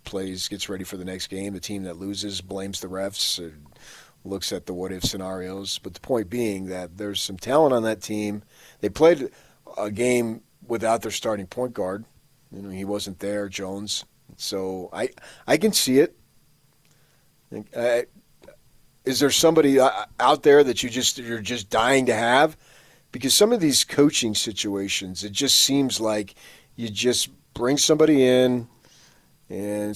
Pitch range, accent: 100-130 Hz, American